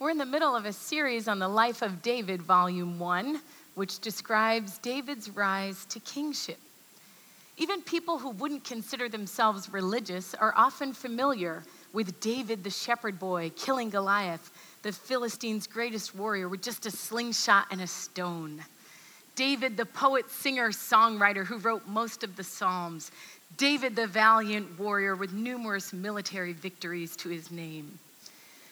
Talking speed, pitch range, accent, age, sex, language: 145 wpm, 195-270 Hz, American, 40-59, female, English